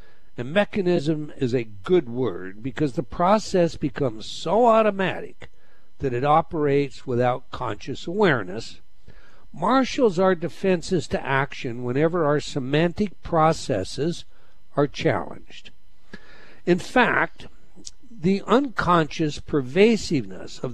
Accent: American